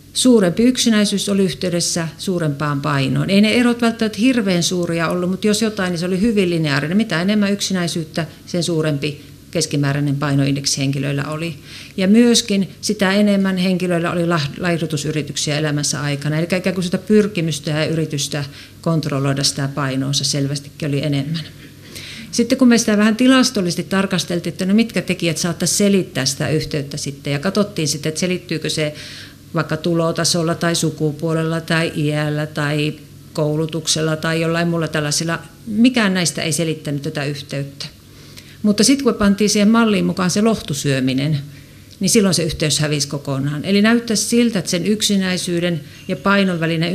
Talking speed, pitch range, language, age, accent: 150 wpm, 145-190 Hz, Finnish, 50-69, native